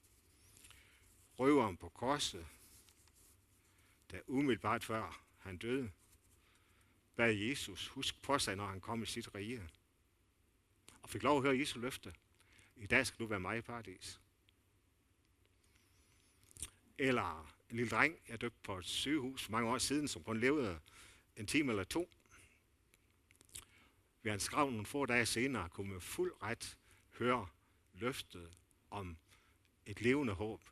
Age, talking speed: 60-79, 140 wpm